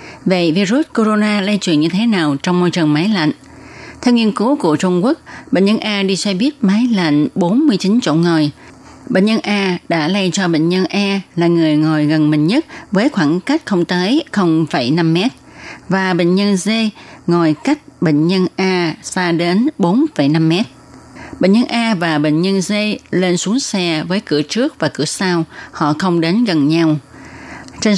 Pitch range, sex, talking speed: 160-215 Hz, female, 180 wpm